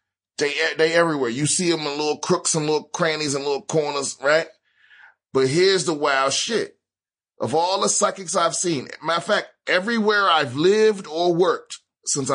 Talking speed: 175 wpm